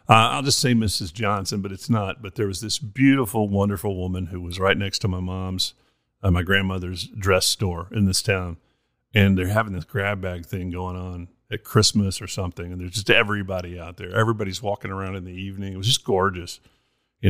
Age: 50-69